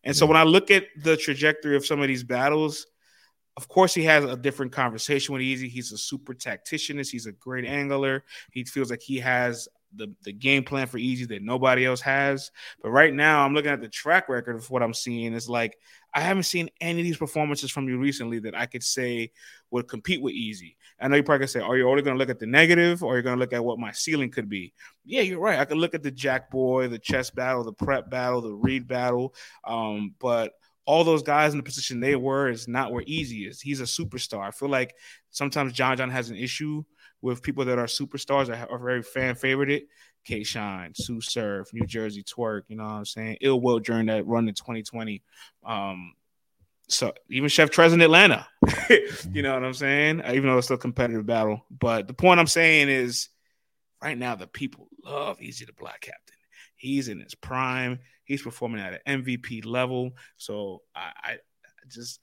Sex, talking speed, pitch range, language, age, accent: male, 225 wpm, 120-140 Hz, English, 20-39, American